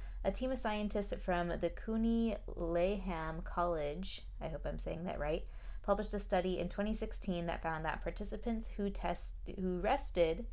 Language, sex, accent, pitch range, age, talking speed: English, female, American, 160-195 Hz, 20-39, 160 wpm